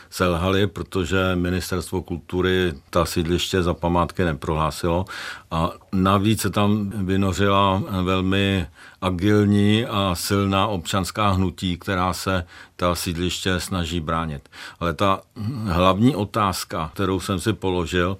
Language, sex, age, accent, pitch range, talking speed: Czech, male, 50-69, native, 90-100 Hz, 110 wpm